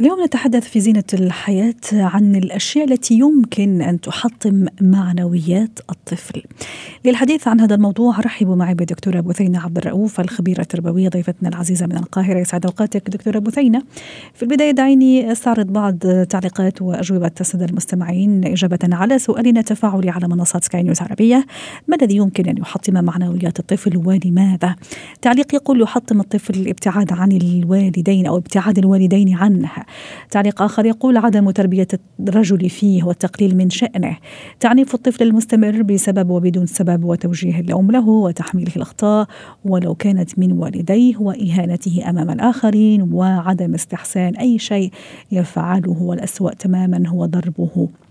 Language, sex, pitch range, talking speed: Arabic, female, 180-215 Hz, 135 wpm